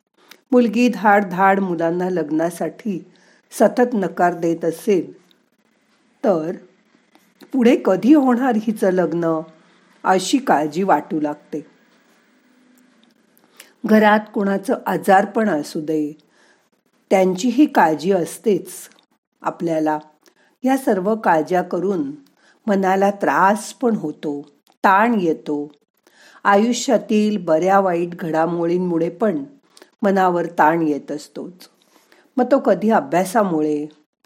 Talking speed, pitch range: 90 wpm, 165-230 Hz